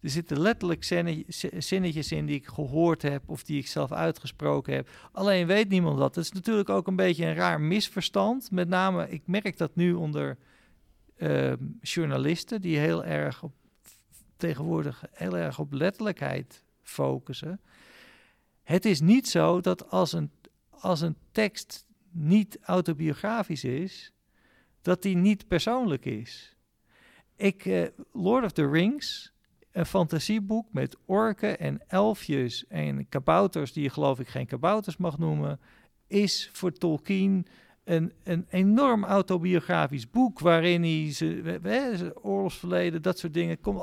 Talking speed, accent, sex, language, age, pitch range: 140 wpm, Dutch, male, Dutch, 50-69, 145-195 Hz